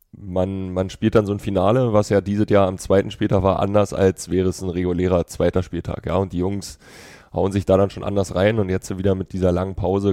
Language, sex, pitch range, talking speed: German, male, 90-100 Hz, 235 wpm